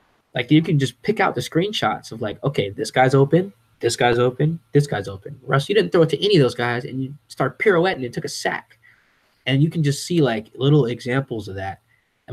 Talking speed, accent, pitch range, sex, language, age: 245 wpm, American, 115-145 Hz, male, English, 10-29